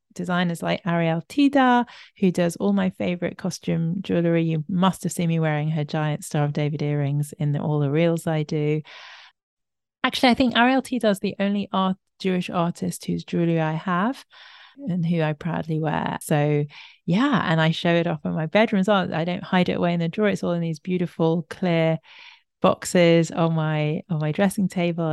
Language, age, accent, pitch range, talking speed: English, 30-49, British, 165-210 Hz, 195 wpm